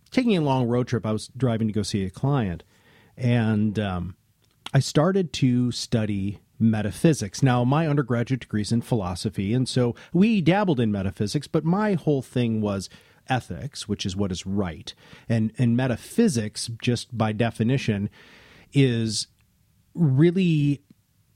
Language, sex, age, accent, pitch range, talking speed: English, male, 40-59, American, 105-135 Hz, 145 wpm